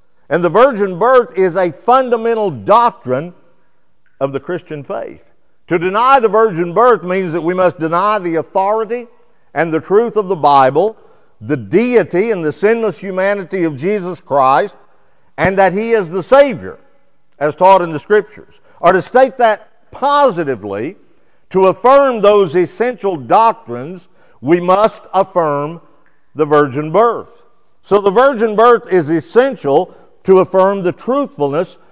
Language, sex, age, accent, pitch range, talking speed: English, male, 50-69, American, 175-235 Hz, 145 wpm